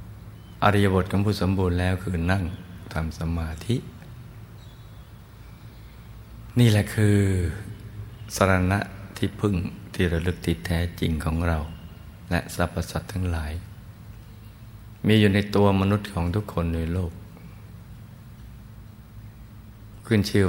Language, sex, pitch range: Thai, male, 85-105 Hz